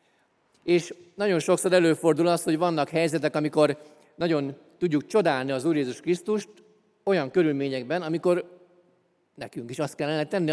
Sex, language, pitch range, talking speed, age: male, Hungarian, 140-180 Hz, 135 wpm, 40-59